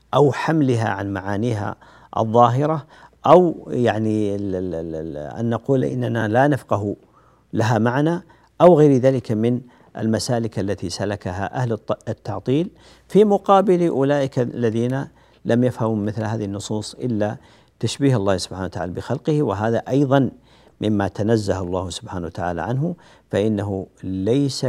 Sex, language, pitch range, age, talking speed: male, Arabic, 100-130 Hz, 50-69, 120 wpm